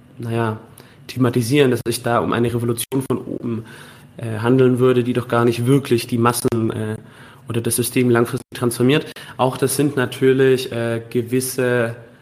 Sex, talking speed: male, 155 wpm